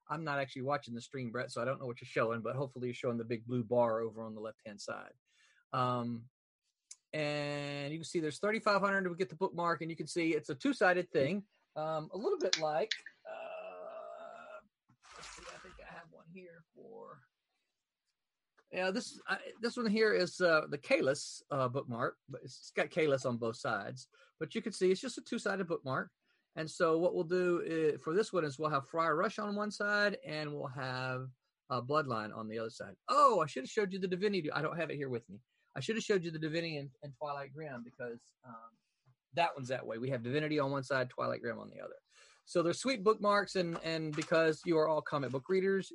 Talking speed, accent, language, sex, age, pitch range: 225 wpm, American, English, male, 40-59, 130-185 Hz